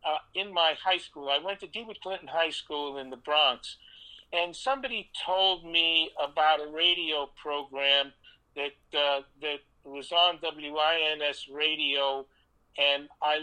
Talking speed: 145 wpm